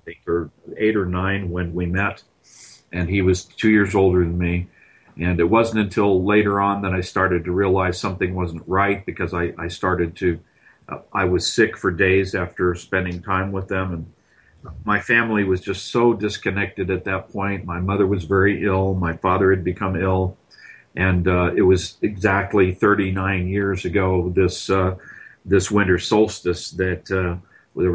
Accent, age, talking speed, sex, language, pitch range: American, 40-59, 175 wpm, male, English, 90-100 Hz